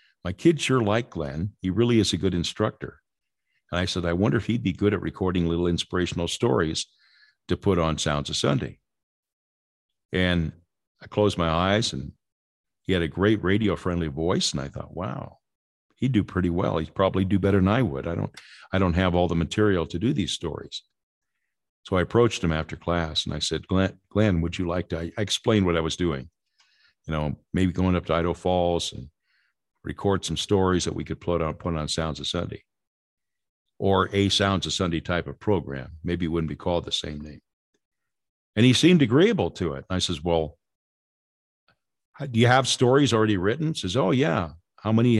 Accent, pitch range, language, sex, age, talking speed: American, 80-105 Hz, English, male, 50-69, 200 wpm